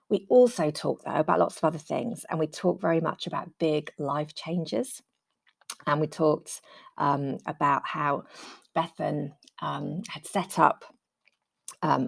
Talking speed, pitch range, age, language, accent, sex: 150 wpm, 150-175 Hz, 30-49, English, British, female